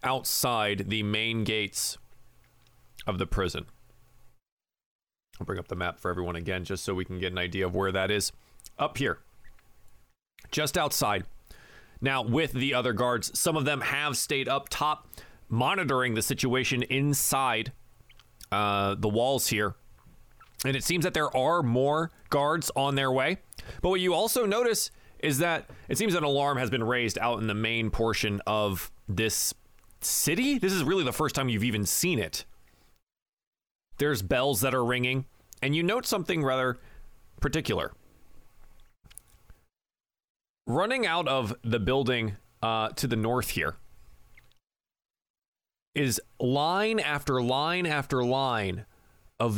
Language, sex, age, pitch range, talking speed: English, male, 30-49, 110-145 Hz, 145 wpm